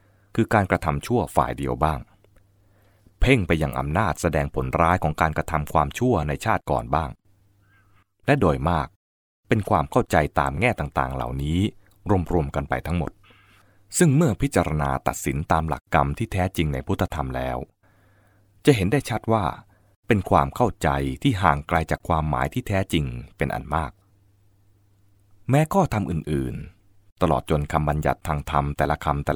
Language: English